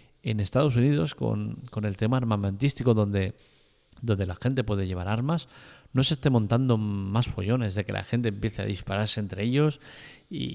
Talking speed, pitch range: 175 wpm, 105-130 Hz